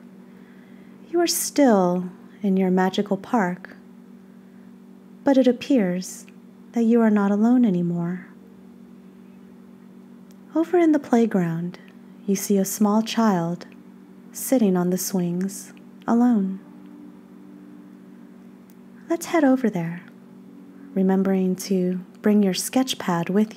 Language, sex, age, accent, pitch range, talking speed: English, female, 30-49, American, 200-215 Hz, 105 wpm